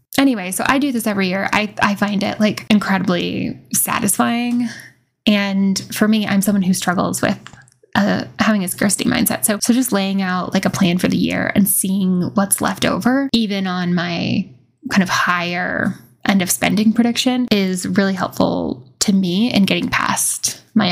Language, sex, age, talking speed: English, female, 10-29, 180 wpm